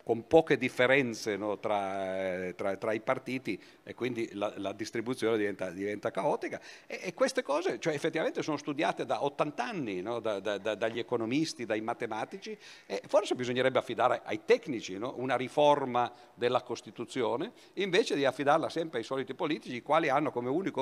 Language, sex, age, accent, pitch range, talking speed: Italian, male, 50-69, native, 115-155 Hz, 165 wpm